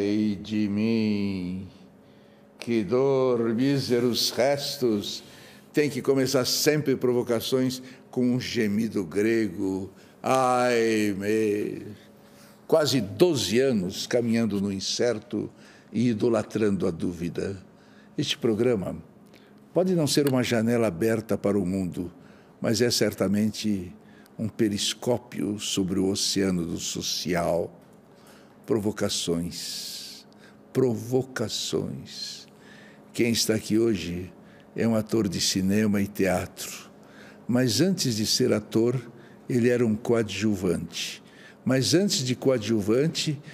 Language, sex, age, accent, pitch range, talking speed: Portuguese, male, 60-79, Brazilian, 105-130 Hz, 100 wpm